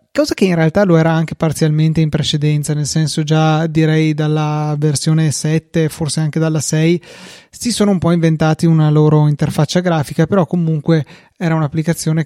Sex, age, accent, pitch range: male, 30-49, native, 155-175 Hz